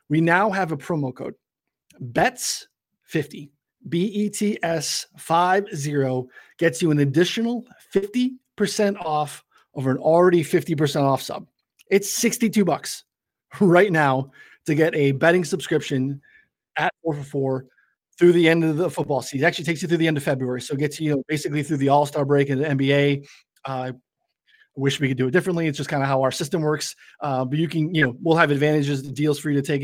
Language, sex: English, male